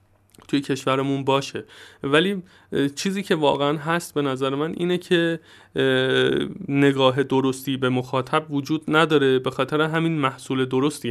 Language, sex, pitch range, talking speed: Persian, male, 120-145 Hz, 130 wpm